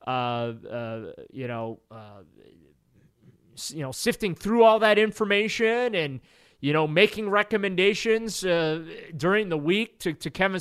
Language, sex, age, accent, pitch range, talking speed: English, male, 30-49, American, 150-210 Hz, 135 wpm